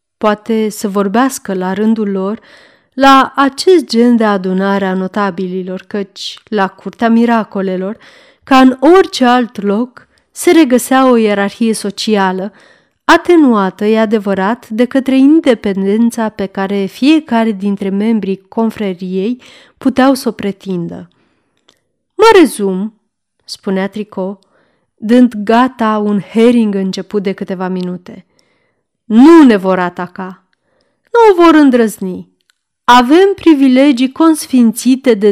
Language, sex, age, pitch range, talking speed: Romanian, female, 30-49, 195-265 Hz, 115 wpm